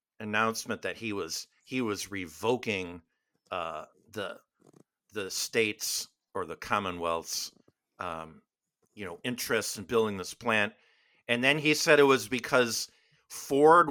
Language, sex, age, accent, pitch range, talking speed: English, male, 50-69, American, 105-145 Hz, 130 wpm